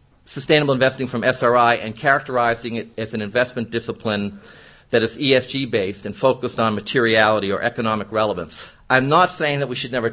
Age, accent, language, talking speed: 50-69, American, English, 165 wpm